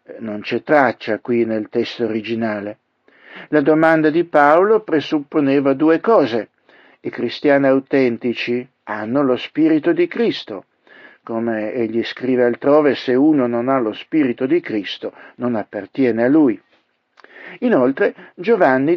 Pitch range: 120-165 Hz